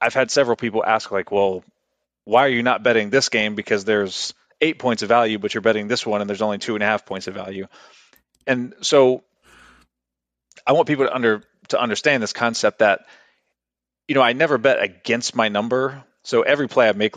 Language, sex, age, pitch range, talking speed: English, male, 30-49, 100-115 Hz, 210 wpm